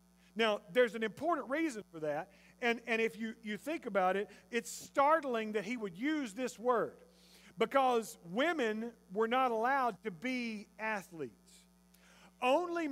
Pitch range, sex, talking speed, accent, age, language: 190-250 Hz, male, 150 wpm, American, 40-59, English